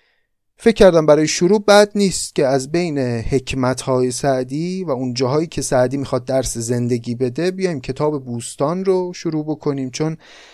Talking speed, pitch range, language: 155 wpm, 130-185 Hz, Persian